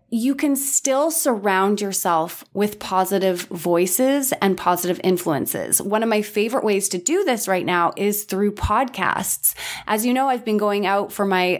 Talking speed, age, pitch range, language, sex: 170 wpm, 20-39, 190-230 Hz, English, female